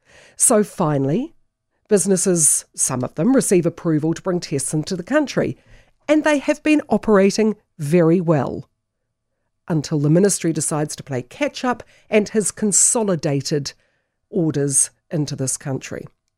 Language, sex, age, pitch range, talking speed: English, female, 50-69, 150-215 Hz, 130 wpm